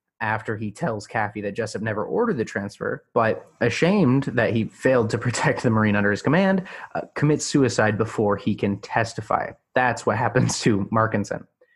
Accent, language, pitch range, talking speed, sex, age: American, English, 105-120 Hz, 175 wpm, male, 30-49